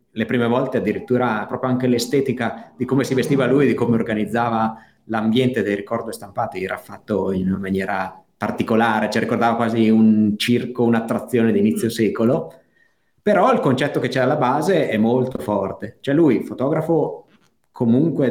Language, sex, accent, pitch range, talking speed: Italian, male, native, 110-130 Hz, 160 wpm